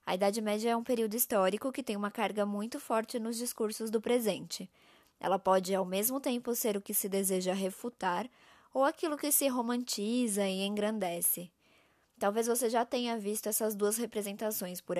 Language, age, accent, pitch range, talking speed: Portuguese, 20-39, Brazilian, 195-235 Hz, 175 wpm